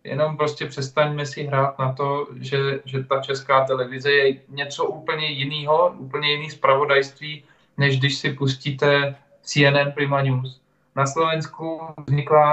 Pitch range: 130-145 Hz